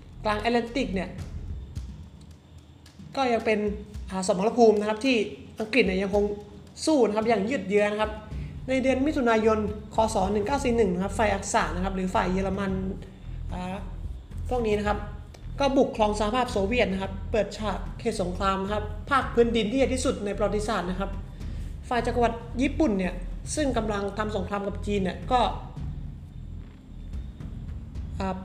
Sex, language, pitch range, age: male, Thai, 190-230 Hz, 20-39